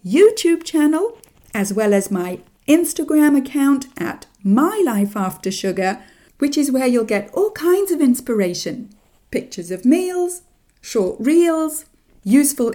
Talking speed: 120 wpm